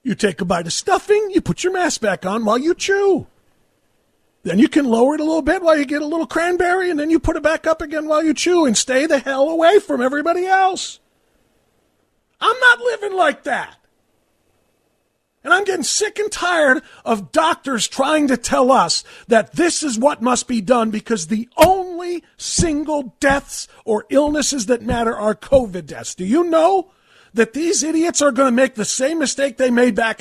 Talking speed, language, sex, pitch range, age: 200 wpm, English, male, 245-325 Hz, 40-59